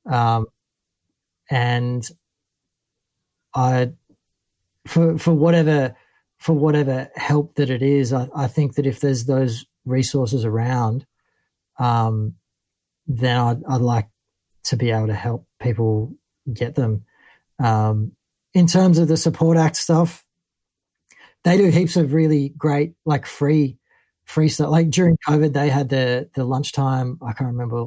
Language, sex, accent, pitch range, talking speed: English, male, Australian, 125-150 Hz, 135 wpm